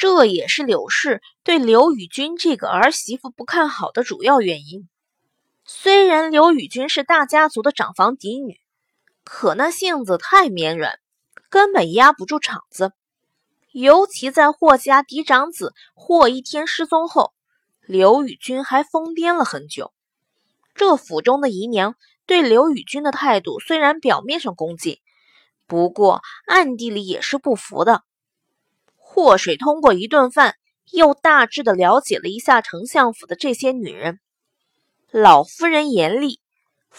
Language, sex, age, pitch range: Chinese, female, 20-39, 225-320 Hz